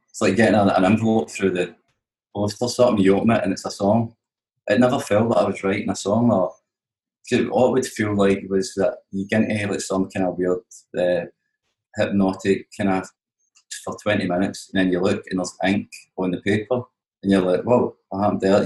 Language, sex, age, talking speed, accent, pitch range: English, male, 20-39, 220 wpm, British, 95-115 Hz